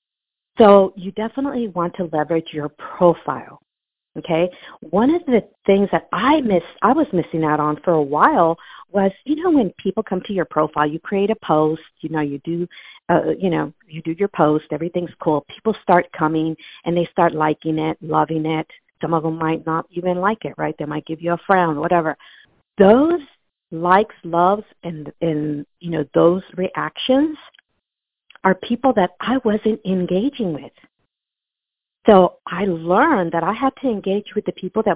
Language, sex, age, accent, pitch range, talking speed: English, female, 50-69, American, 160-200 Hz, 180 wpm